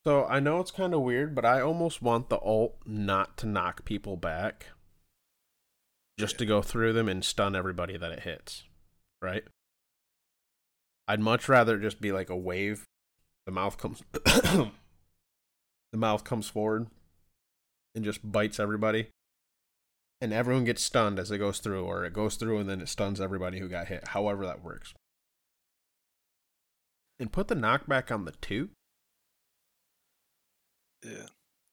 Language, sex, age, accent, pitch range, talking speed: English, male, 20-39, American, 95-120 Hz, 150 wpm